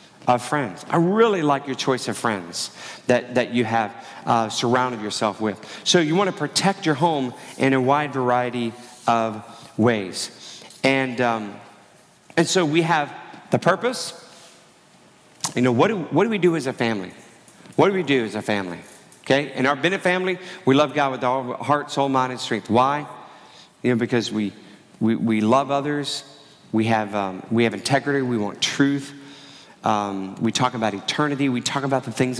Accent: American